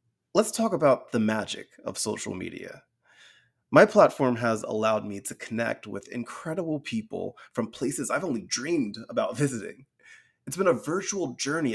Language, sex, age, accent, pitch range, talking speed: English, male, 30-49, American, 115-165 Hz, 155 wpm